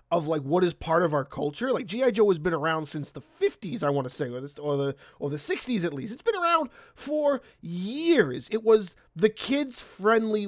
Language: English